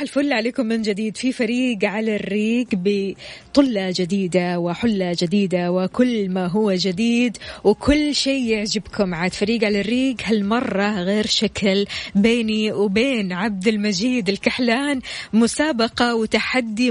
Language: Arabic